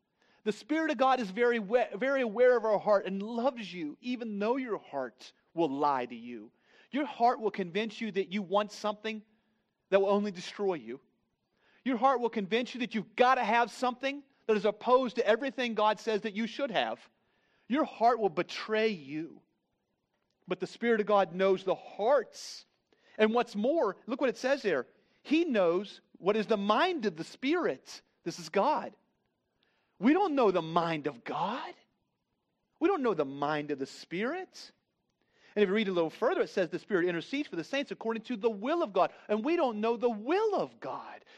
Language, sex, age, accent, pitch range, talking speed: English, male, 40-59, American, 195-255 Hz, 195 wpm